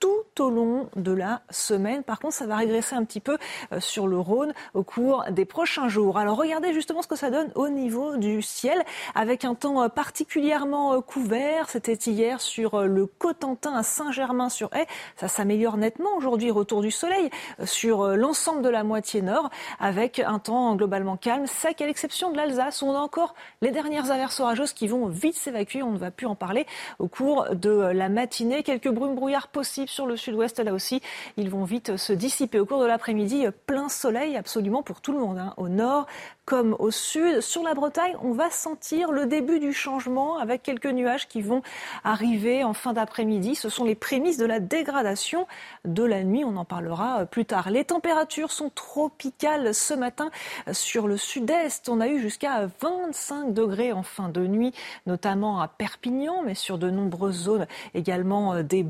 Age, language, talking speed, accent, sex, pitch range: 30-49, French, 185 wpm, French, female, 210-290 Hz